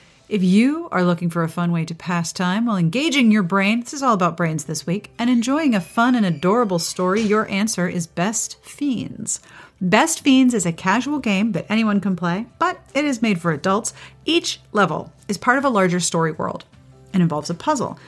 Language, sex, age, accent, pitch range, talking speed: English, female, 40-59, American, 165-220 Hz, 210 wpm